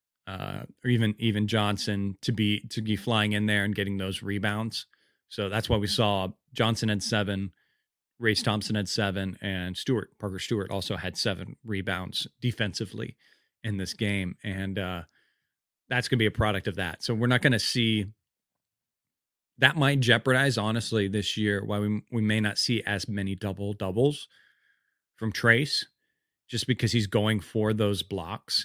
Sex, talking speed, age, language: male, 165 wpm, 30-49, English